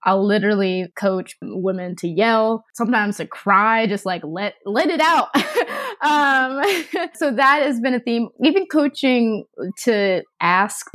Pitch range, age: 175-225 Hz, 20-39